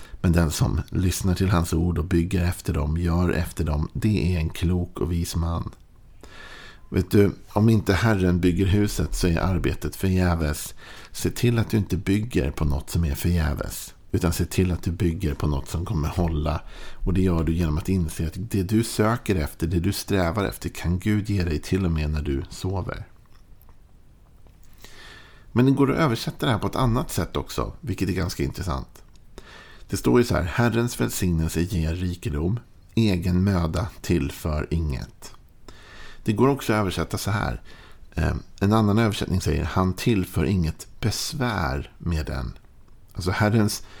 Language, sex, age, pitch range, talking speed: Swedish, male, 50-69, 85-100 Hz, 175 wpm